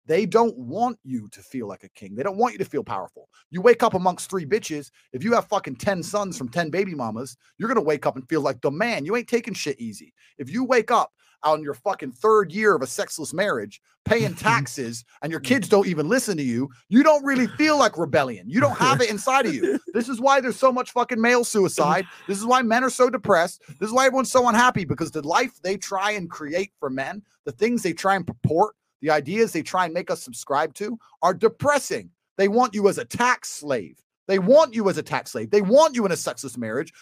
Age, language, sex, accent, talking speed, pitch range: 30-49, English, male, American, 245 wpm, 160-240 Hz